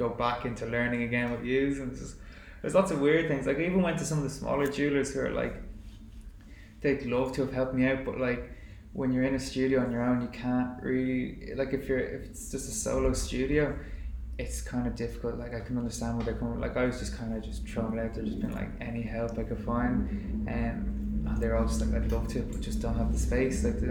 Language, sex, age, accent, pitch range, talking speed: English, male, 20-39, Irish, 115-125 Hz, 255 wpm